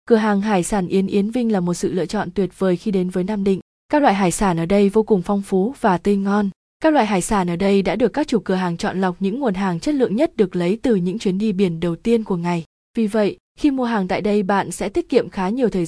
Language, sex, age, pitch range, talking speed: Vietnamese, female, 20-39, 185-225 Hz, 290 wpm